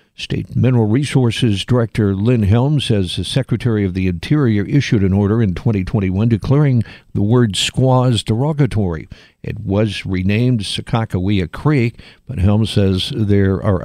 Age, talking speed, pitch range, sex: 60-79, 140 wpm, 95-120 Hz, male